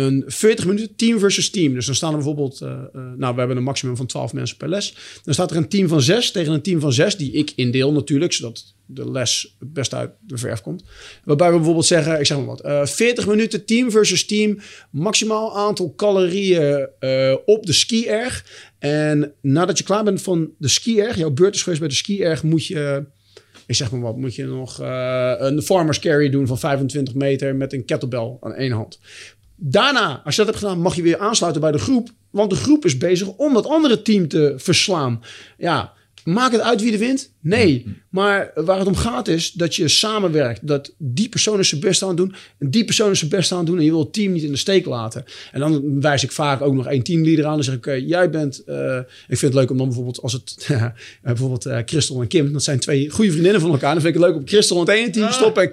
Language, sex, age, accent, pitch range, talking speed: Dutch, male, 40-59, Dutch, 135-200 Hz, 245 wpm